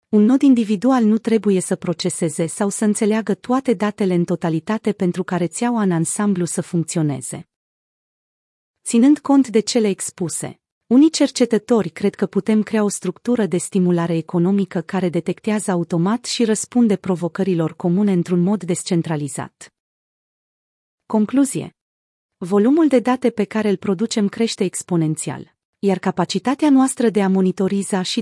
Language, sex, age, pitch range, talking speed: Romanian, female, 30-49, 180-230 Hz, 135 wpm